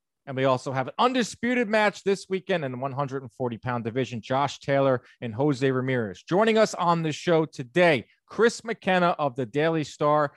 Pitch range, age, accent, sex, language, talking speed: 135-180 Hz, 30-49, American, male, English, 175 wpm